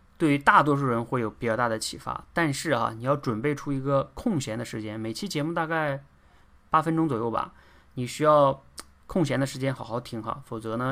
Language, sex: Chinese, male